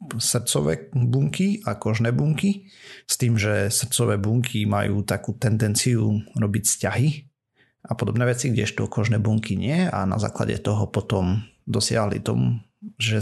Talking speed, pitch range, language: 135 wpm, 105-120 Hz, Slovak